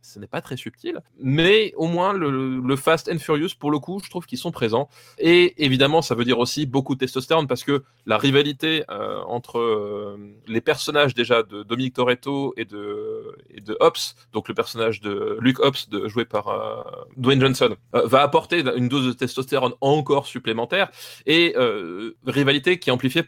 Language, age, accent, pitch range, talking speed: French, 20-39, French, 125-160 Hz, 195 wpm